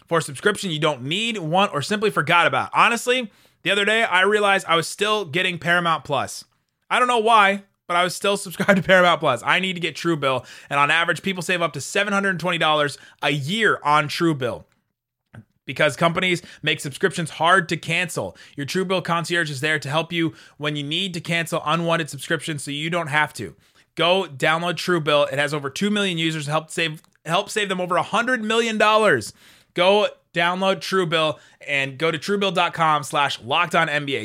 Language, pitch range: English, 150-185 Hz